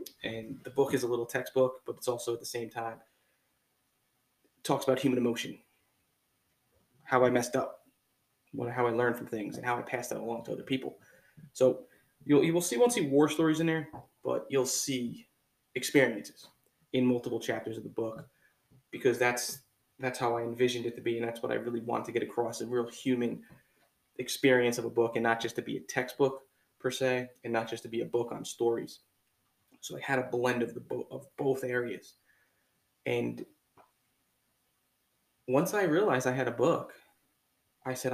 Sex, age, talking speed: male, 20-39, 190 wpm